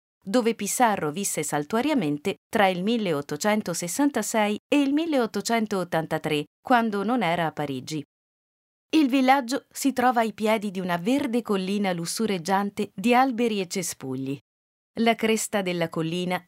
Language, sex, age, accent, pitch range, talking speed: English, female, 50-69, Italian, 175-245 Hz, 125 wpm